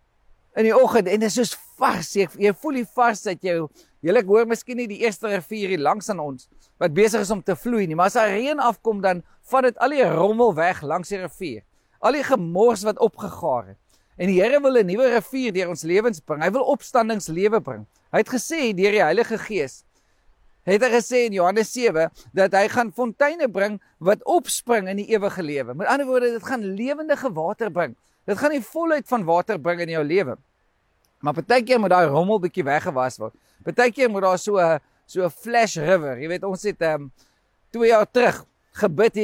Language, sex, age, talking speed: English, male, 50-69, 210 wpm